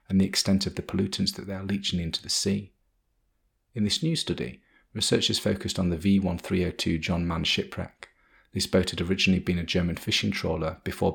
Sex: male